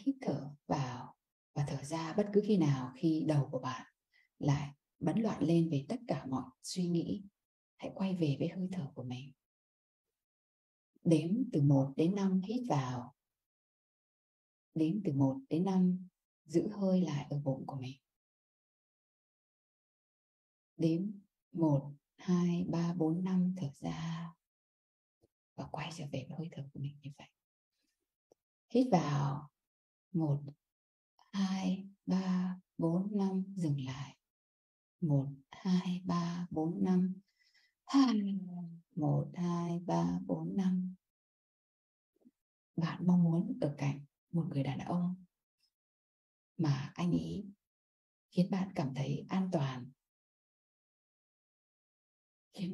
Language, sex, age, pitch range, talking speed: Vietnamese, female, 20-39, 140-185 Hz, 125 wpm